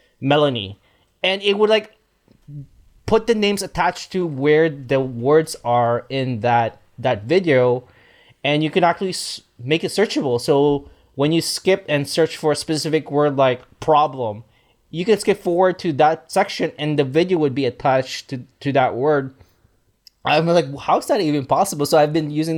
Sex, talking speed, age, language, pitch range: male, 175 wpm, 20-39, English, 120-155 Hz